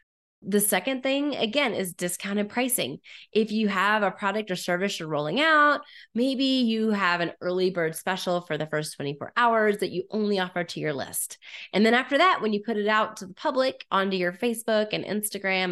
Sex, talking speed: female, 200 wpm